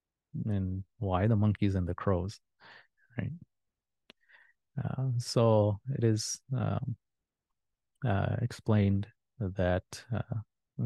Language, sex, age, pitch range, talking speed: English, male, 30-49, 95-115 Hz, 95 wpm